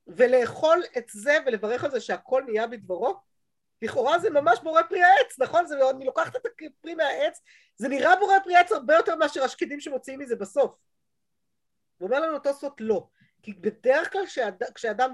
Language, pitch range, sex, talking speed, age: Hebrew, 210-315 Hz, female, 175 wpm, 30-49